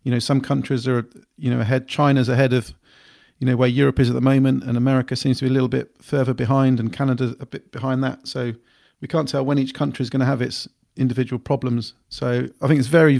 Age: 40-59